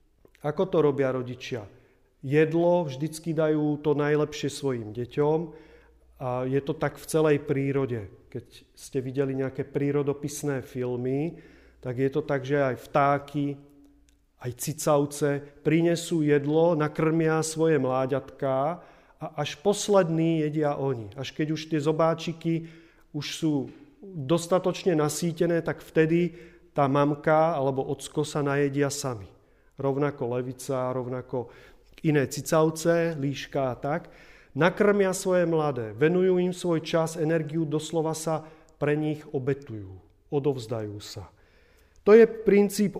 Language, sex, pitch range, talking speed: Czech, male, 135-165 Hz, 120 wpm